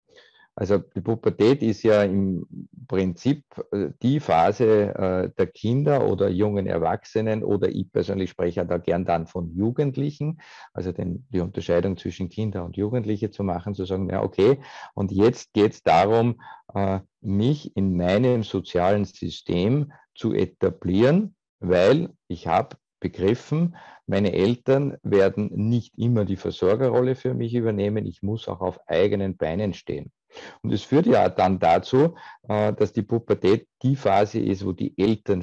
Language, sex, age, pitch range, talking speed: German, male, 50-69, 95-125 Hz, 140 wpm